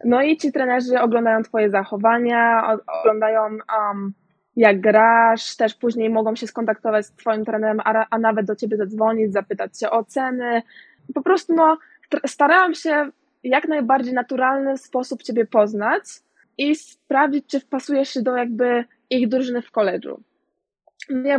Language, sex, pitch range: Polish, female, 220-270 Hz